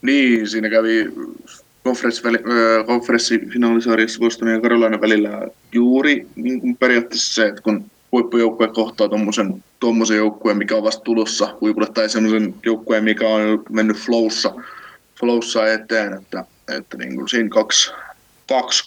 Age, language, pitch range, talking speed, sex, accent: 20-39, Finnish, 110-115 Hz, 120 wpm, male, native